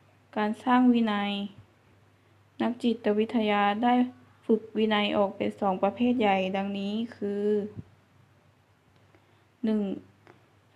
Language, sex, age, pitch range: Thai, female, 20-39, 195-225 Hz